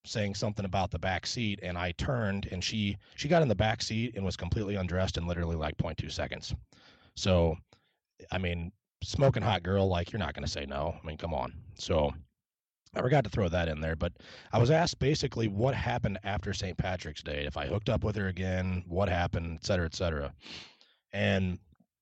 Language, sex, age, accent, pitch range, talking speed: English, male, 30-49, American, 80-105 Hz, 205 wpm